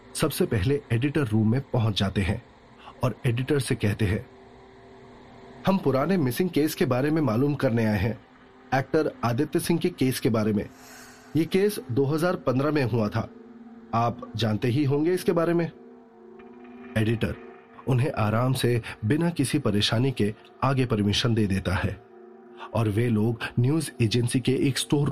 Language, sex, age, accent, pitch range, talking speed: Hindi, male, 30-49, native, 110-145 Hz, 160 wpm